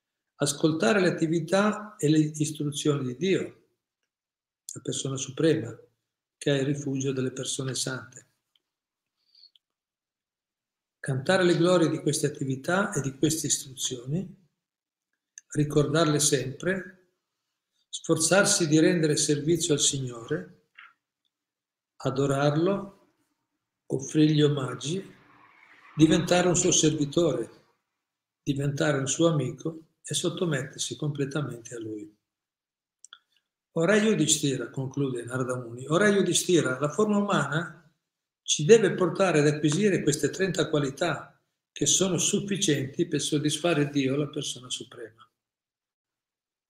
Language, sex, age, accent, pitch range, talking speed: Italian, male, 50-69, native, 135-170 Hz, 100 wpm